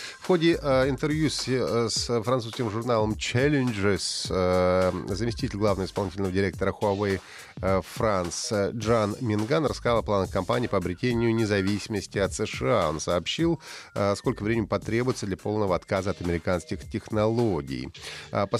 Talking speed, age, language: 115 wpm, 30-49, Russian